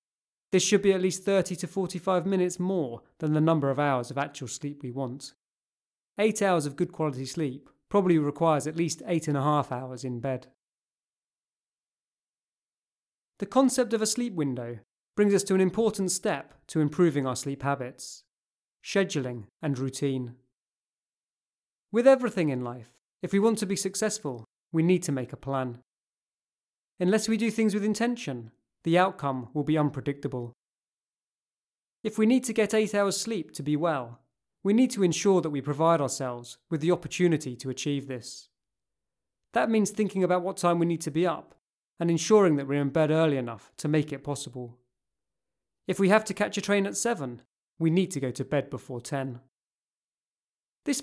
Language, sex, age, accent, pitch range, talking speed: English, male, 30-49, British, 130-190 Hz, 175 wpm